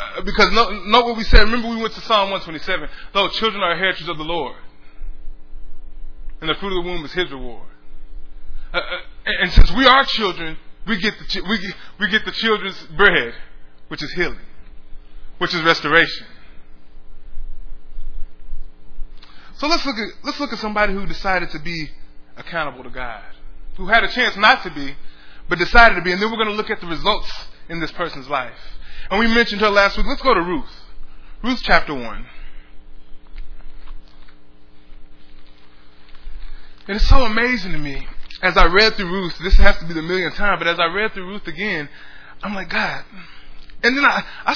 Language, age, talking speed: English, 20-39, 185 wpm